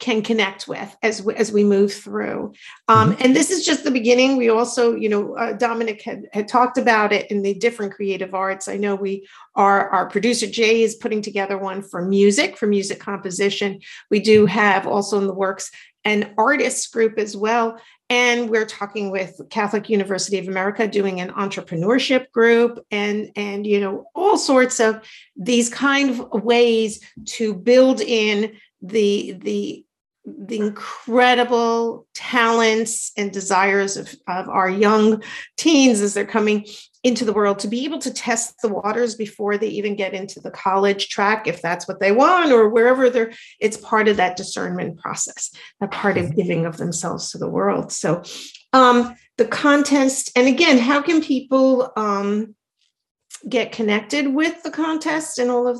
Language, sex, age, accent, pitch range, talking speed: English, female, 50-69, American, 200-245 Hz, 170 wpm